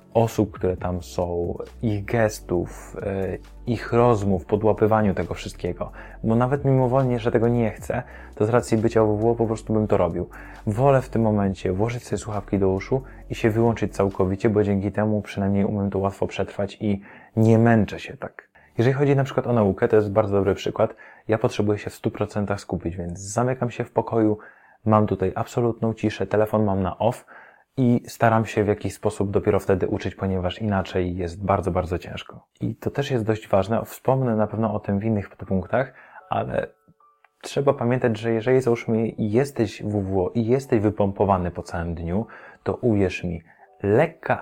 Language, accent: Polish, native